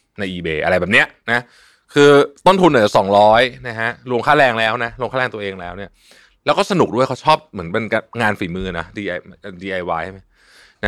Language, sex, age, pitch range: Thai, male, 20-39, 95-130 Hz